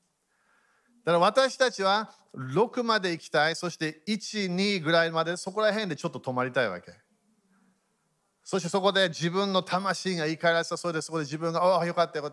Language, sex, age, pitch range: Japanese, male, 40-59, 165-220 Hz